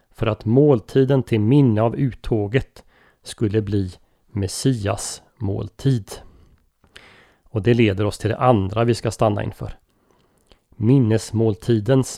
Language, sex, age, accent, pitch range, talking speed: Swedish, male, 30-49, native, 105-130 Hz, 115 wpm